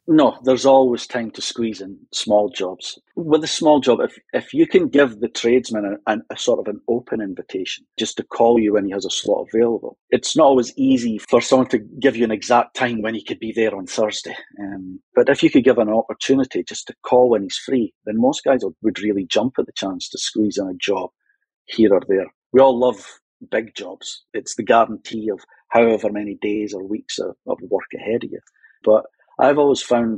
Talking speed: 220 wpm